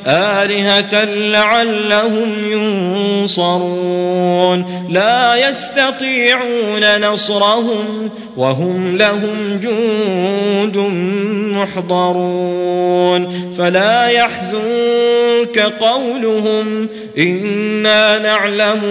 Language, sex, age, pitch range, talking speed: Arabic, male, 30-49, 195-240 Hz, 50 wpm